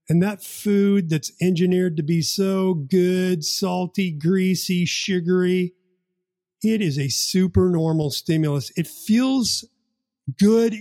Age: 40-59